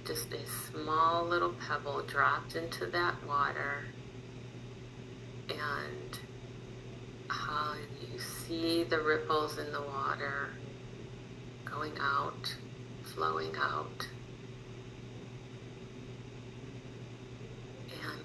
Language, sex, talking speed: English, female, 75 wpm